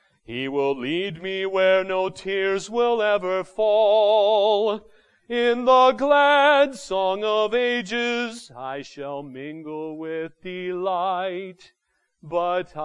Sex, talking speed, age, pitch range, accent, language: male, 105 wpm, 40-59, 175-225 Hz, American, English